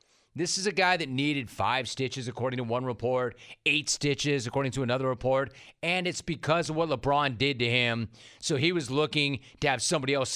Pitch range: 125-165 Hz